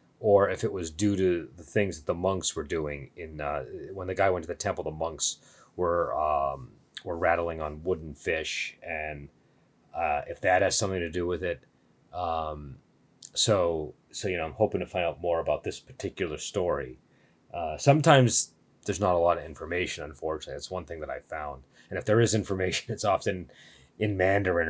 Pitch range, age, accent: 85-110 Hz, 30-49, American